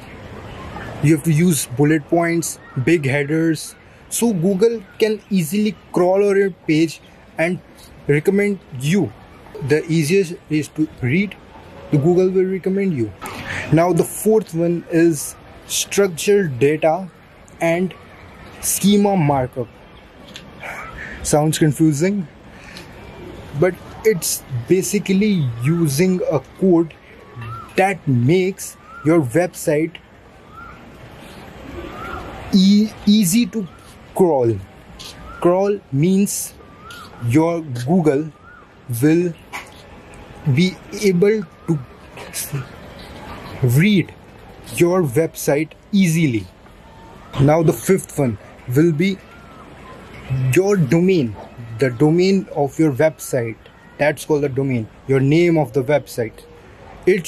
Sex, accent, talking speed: male, Indian, 95 wpm